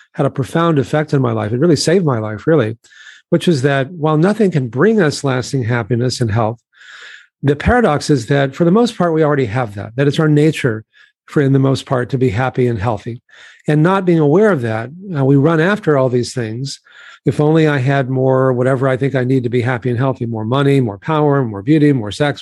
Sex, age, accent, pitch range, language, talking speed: male, 40-59, American, 125-160 Hz, English, 230 wpm